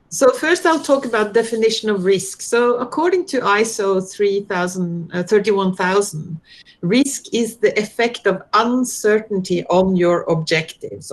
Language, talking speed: Malay, 125 wpm